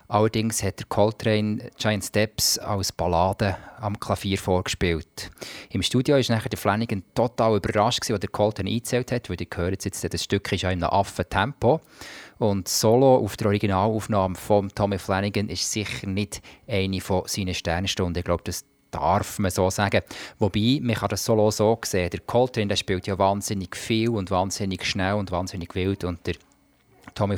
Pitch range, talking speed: 90-105 Hz, 165 wpm